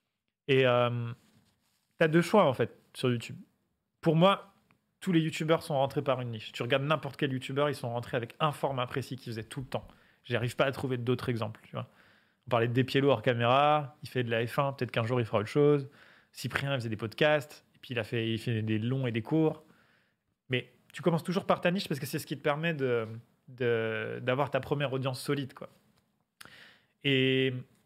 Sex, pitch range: male, 120-150 Hz